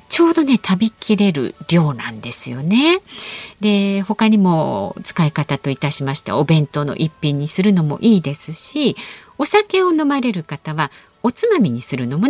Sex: female